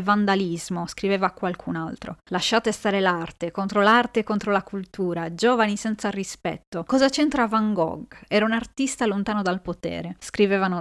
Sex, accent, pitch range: female, native, 180-230 Hz